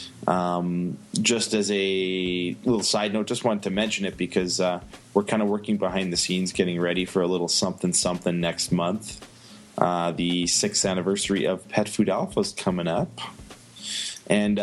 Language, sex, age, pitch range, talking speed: English, male, 20-39, 90-100 Hz, 170 wpm